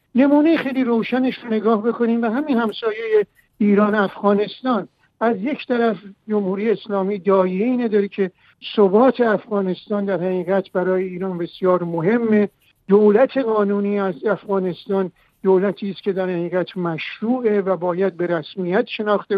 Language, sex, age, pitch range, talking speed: Persian, male, 60-79, 190-230 Hz, 130 wpm